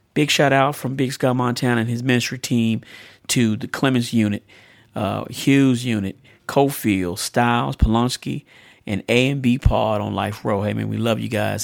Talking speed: 165 wpm